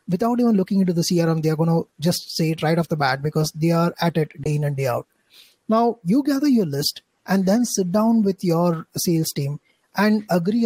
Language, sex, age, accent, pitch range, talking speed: English, male, 30-49, Indian, 160-200 Hz, 230 wpm